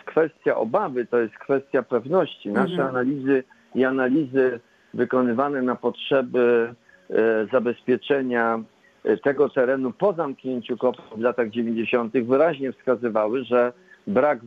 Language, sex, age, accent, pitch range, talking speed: Polish, male, 50-69, native, 125-145 Hz, 110 wpm